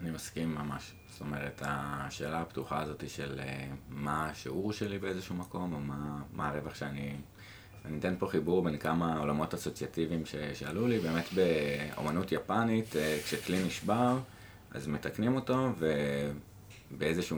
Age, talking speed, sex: 20-39, 145 wpm, male